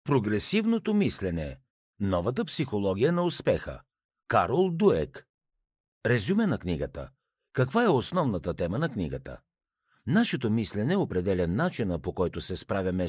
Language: Bulgarian